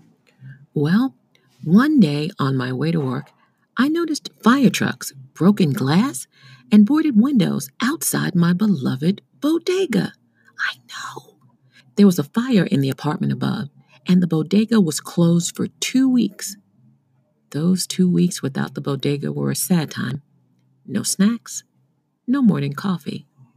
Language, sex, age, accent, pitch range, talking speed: English, female, 50-69, American, 140-210 Hz, 135 wpm